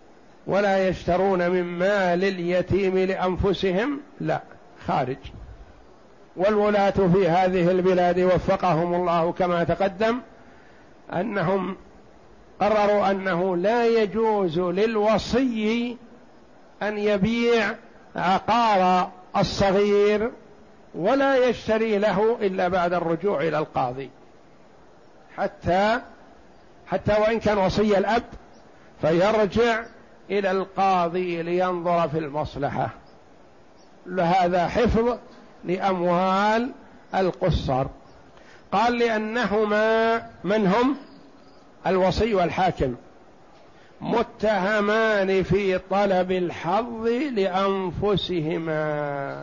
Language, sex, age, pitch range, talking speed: Arabic, male, 60-79, 180-215 Hz, 75 wpm